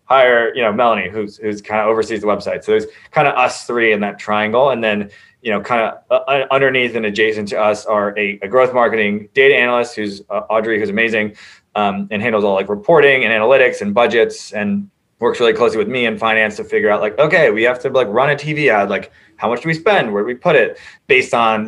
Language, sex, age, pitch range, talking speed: English, male, 20-39, 100-125 Hz, 245 wpm